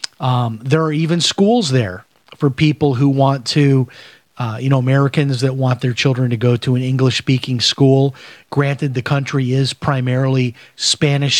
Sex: male